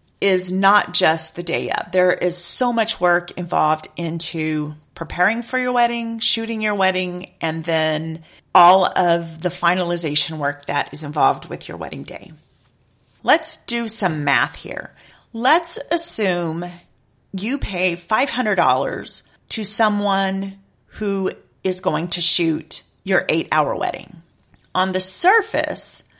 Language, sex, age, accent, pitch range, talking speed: English, female, 40-59, American, 160-200 Hz, 130 wpm